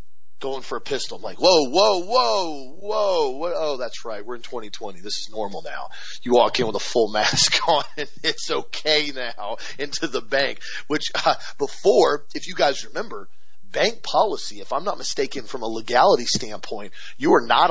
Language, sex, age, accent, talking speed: English, male, 30-49, American, 185 wpm